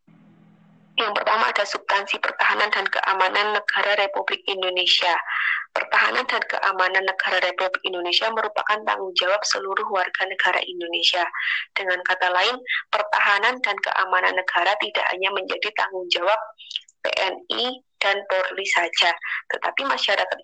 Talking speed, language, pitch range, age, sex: 120 wpm, Indonesian, 185-220 Hz, 20-39, female